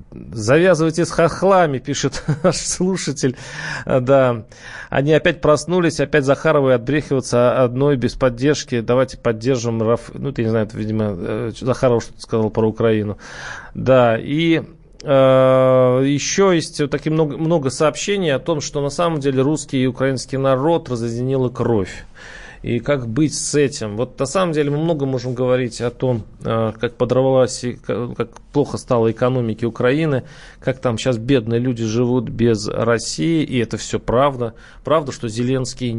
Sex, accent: male, native